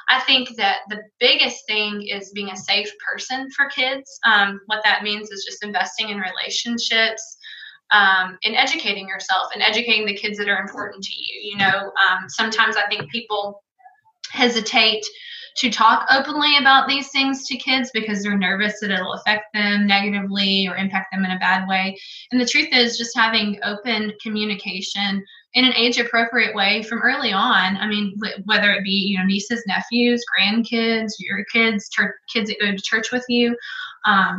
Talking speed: 175 wpm